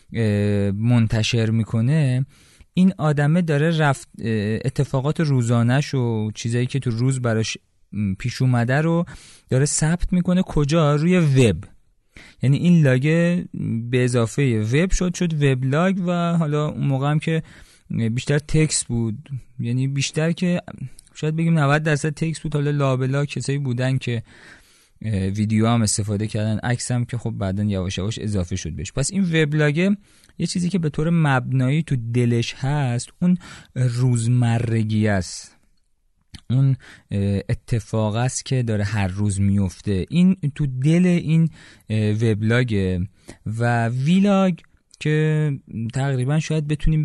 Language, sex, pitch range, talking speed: Persian, male, 110-155 Hz, 130 wpm